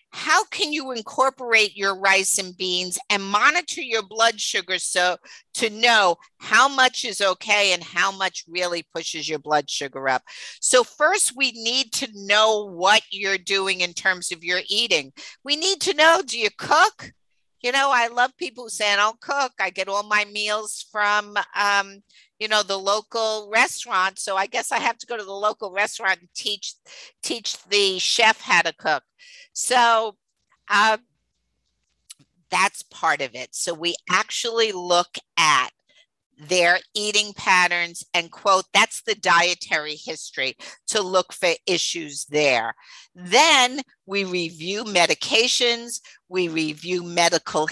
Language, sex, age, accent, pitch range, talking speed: English, female, 50-69, American, 175-225 Hz, 150 wpm